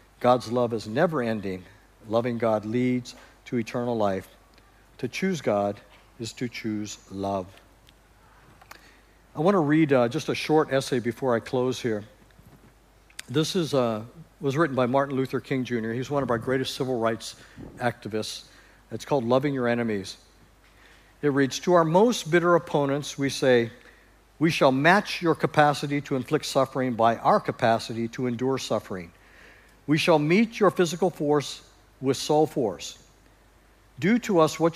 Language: English